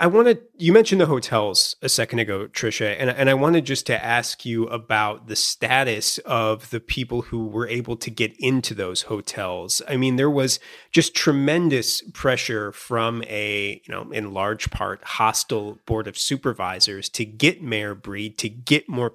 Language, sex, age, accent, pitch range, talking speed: English, male, 30-49, American, 110-140 Hz, 180 wpm